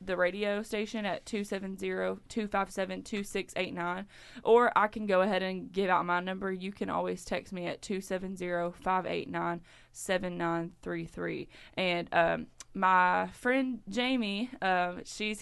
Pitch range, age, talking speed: 180-205 Hz, 20-39, 115 wpm